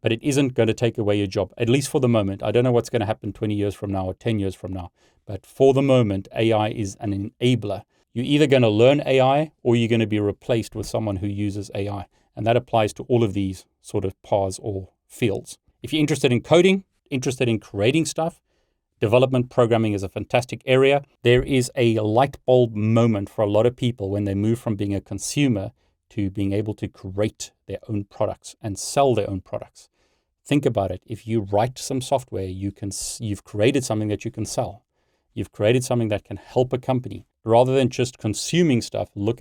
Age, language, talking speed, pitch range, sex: 40-59, English, 210 wpm, 100-125 Hz, male